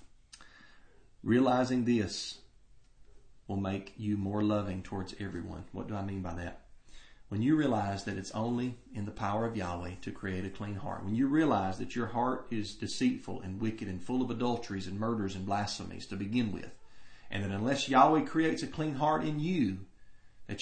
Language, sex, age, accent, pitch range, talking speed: English, male, 40-59, American, 105-130 Hz, 185 wpm